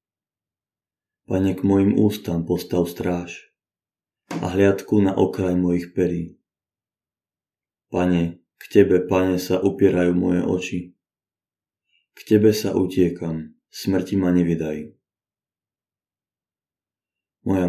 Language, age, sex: Slovak, 20-39, male